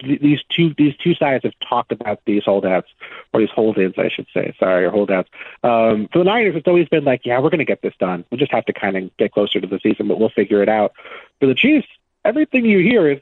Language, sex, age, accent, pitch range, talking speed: English, male, 40-59, American, 110-150 Hz, 260 wpm